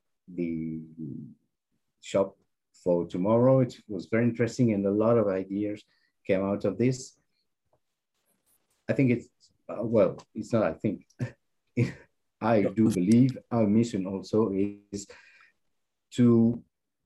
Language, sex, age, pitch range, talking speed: English, male, 50-69, 95-115 Hz, 120 wpm